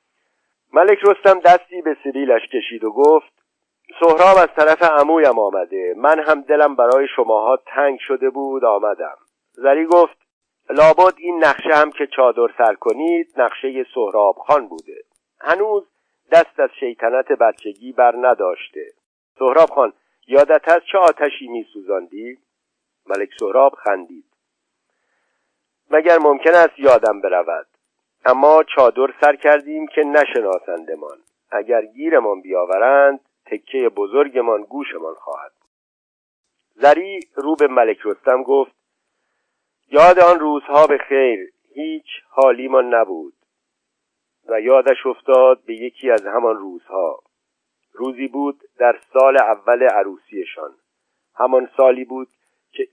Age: 50-69